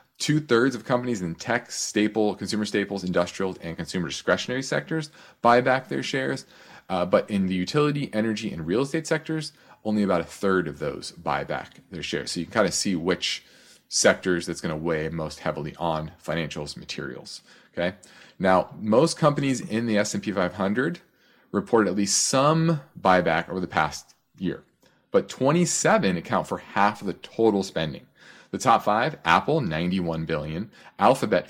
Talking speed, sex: 165 wpm, male